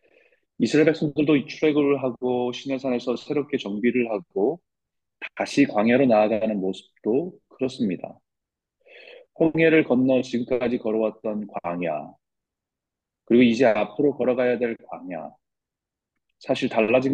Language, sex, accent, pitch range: Korean, male, native, 110-140 Hz